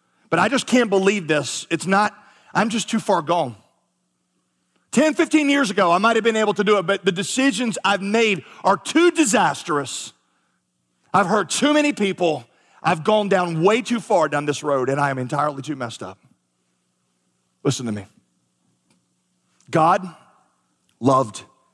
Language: English